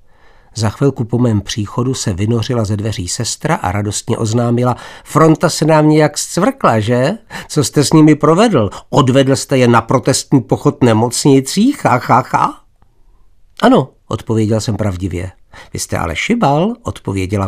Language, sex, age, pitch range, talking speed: Czech, male, 60-79, 105-145 Hz, 150 wpm